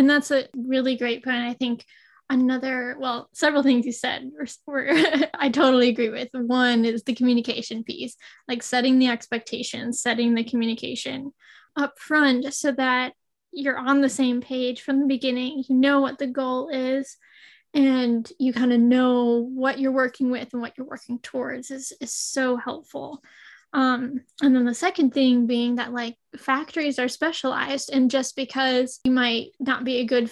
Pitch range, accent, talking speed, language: 245-270 Hz, American, 175 wpm, English